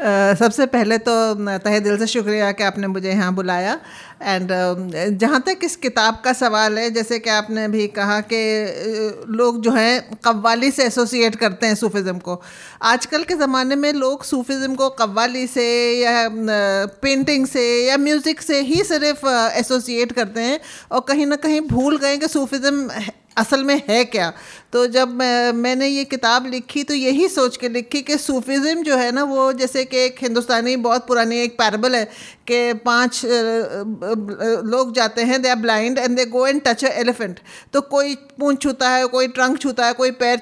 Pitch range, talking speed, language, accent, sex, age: 225-275 Hz, 180 wpm, Hindi, native, female, 50-69